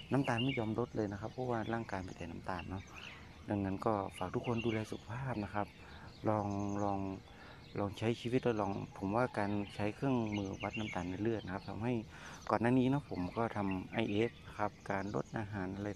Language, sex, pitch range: Thai, male, 95-115 Hz